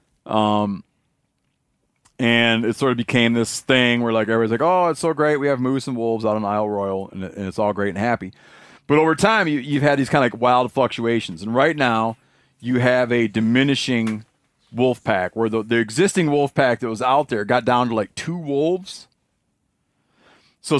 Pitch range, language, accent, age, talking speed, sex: 115-145 Hz, English, American, 30-49, 200 wpm, male